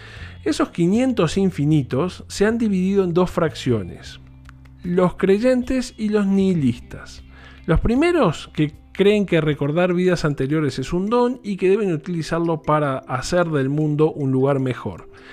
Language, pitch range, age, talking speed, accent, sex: Spanish, 130-195 Hz, 40-59, 140 wpm, Argentinian, male